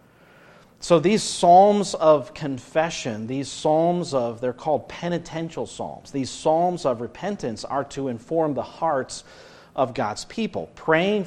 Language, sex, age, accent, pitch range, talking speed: English, male, 40-59, American, 125-165 Hz, 135 wpm